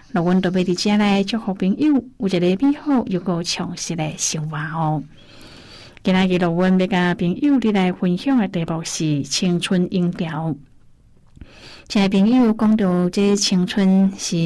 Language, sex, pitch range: Chinese, female, 170-215 Hz